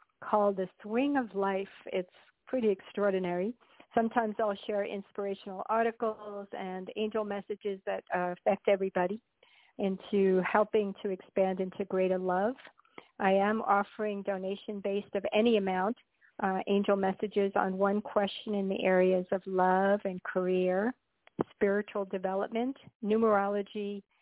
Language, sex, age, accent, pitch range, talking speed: English, female, 50-69, American, 185-210 Hz, 125 wpm